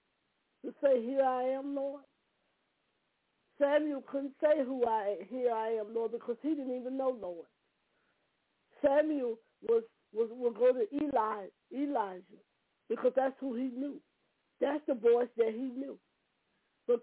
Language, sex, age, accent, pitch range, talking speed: English, female, 50-69, American, 235-295 Hz, 145 wpm